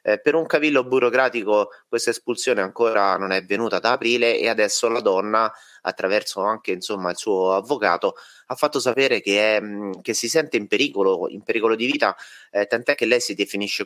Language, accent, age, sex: Italian, native, 30-49, male